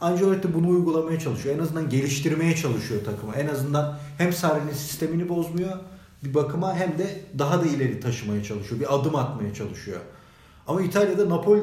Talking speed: 165 wpm